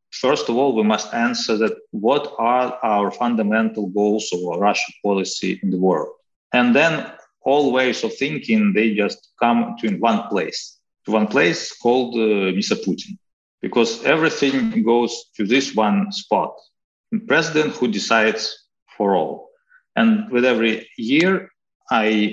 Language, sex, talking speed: English, male, 150 wpm